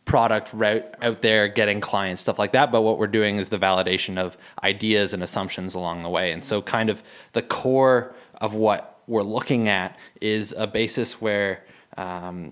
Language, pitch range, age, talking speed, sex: English, 100-120 Hz, 20-39, 185 wpm, male